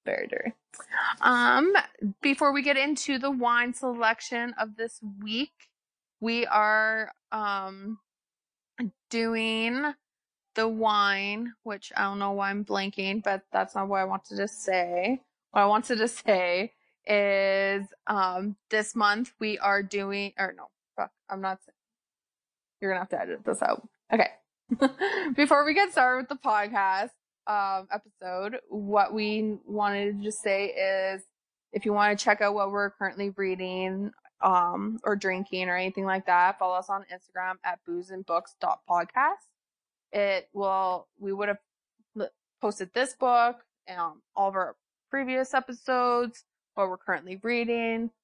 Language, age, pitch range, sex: English, 20-39, 190-235 Hz, female